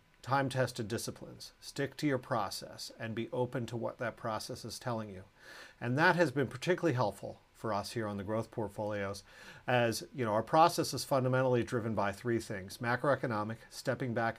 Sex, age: male, 40-59